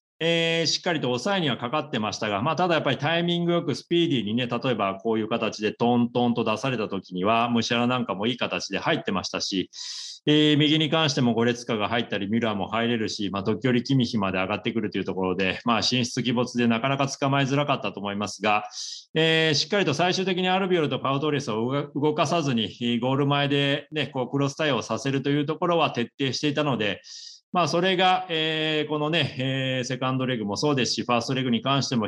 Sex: male